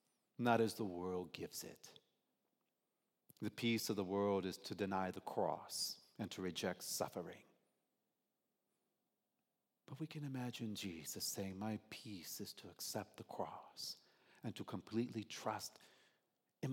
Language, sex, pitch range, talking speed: English, male, 95-125 Hz, 135 wpm